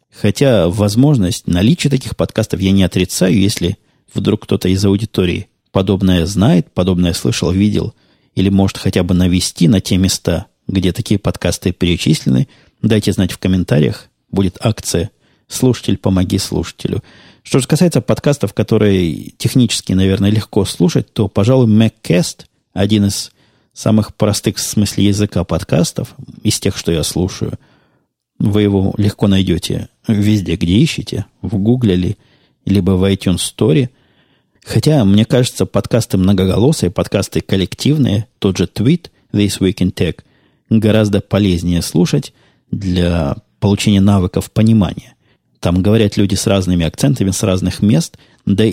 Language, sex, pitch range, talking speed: Russian, male, 95-110 Hz, 135 wpm